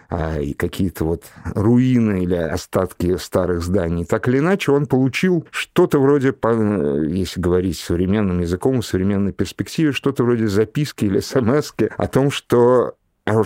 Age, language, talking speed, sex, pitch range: 50-69, Russian, 135 wpm, male, 95-135 Hz